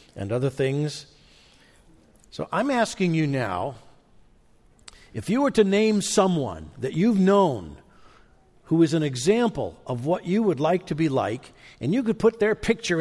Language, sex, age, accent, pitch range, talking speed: English, male, 50-69, American, 110-180 Hz, 160 wpm